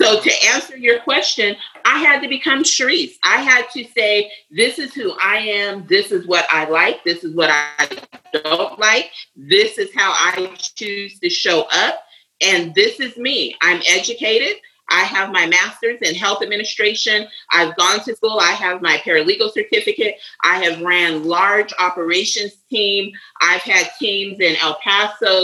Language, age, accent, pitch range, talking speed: English, 40-59, American, 180-290 Hz, 170 wpm